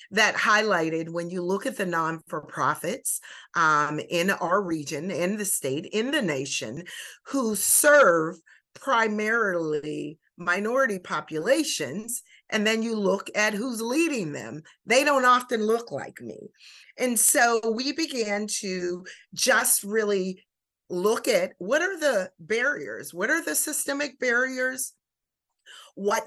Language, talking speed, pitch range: English, 125 wpm, 180-245 Hz